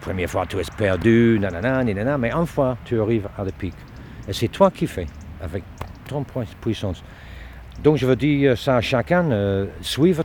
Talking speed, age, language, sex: 185 wpm, 60-79, French, male